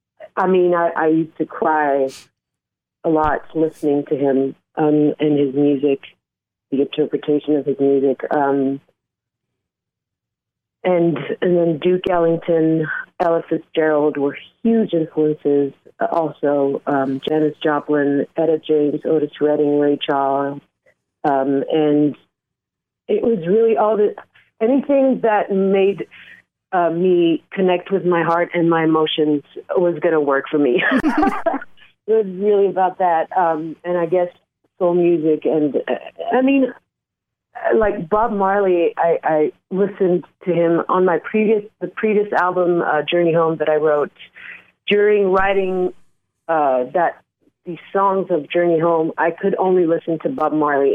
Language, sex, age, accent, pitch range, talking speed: English, female, 40-59, American, 150-185 Hz, 140 wpm